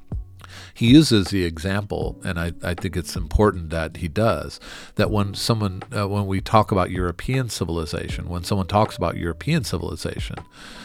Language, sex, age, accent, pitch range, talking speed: English, male, 40-59, American, 85-105 Hz, 160 wpm